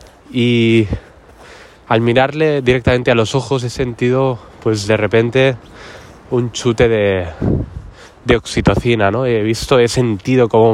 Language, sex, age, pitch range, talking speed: Spanish, male, 20-39, 95-120 Hz, 130 wpm